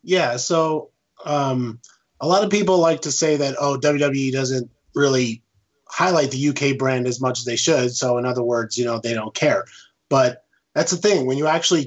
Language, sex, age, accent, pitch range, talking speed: English, male, 20-39, American, 125-155 Hz, 200 wpm